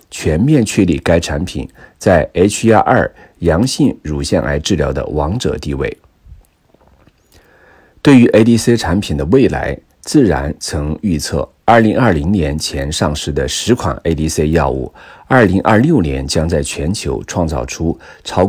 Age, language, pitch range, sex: 50-69, Chinese, 75-105 Hz, male